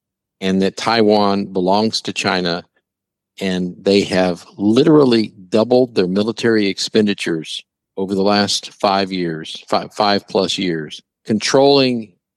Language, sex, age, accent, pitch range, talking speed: English, male, 50-69, American, 95-110 Hz, 115 wpm